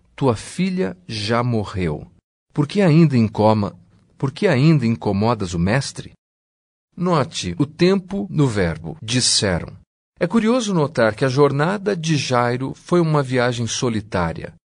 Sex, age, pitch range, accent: male, 40-59, 110-160 Hz, Brazilian